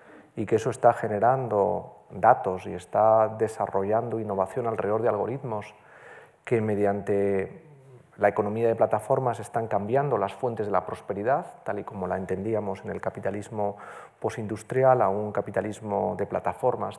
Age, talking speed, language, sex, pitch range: 40-59, 140 wpm, Spanish, male, 110-145 Hz